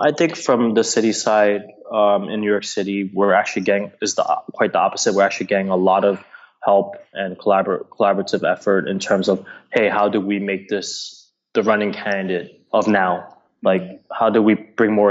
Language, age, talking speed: English, 20-39, 185 wpm